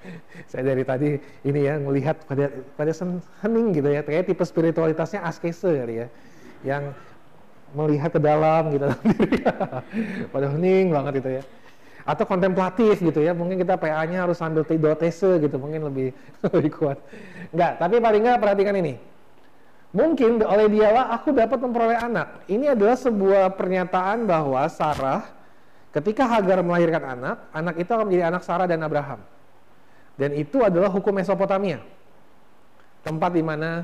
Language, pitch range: Indonesian, 145-195 Hz